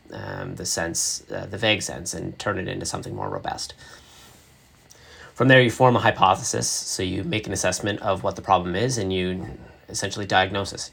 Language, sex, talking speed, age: English, male, 185 wpm, 30-49